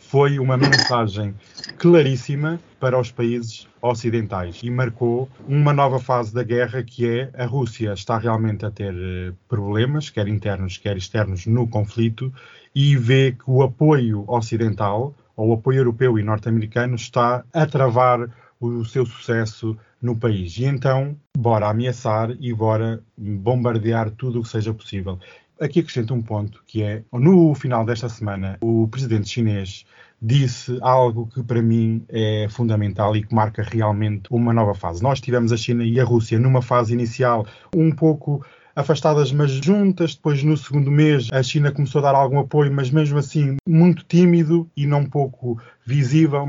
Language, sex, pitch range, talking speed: Portuguese, male, 110-140 Hz, 160 wpm